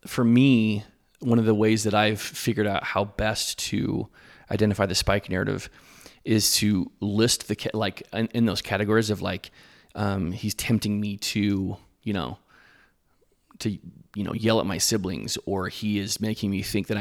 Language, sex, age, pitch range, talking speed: English, male, 30-49, 100-115 Hz, 175 wpm